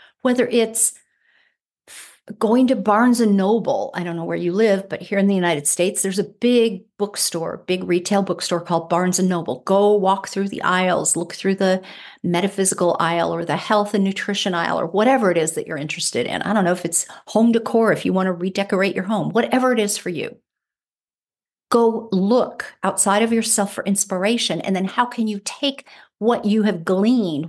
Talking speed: 190 wpm